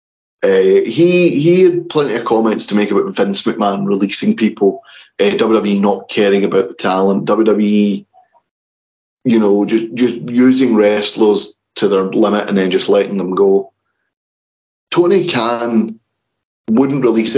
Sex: male